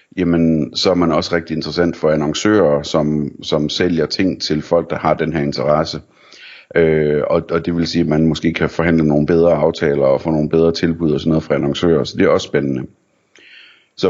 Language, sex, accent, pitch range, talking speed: Danish, male, native, 80-90 Hz, 215 wpm